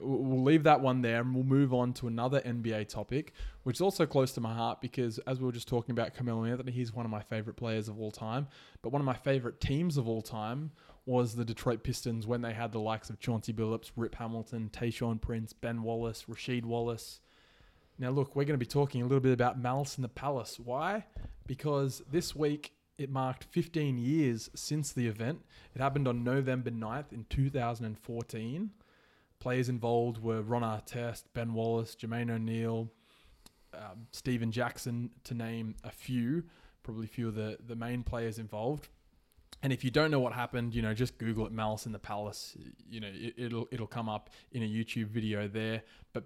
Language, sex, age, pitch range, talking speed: English, male, 20-39, 110-130 Hz, 200 wpm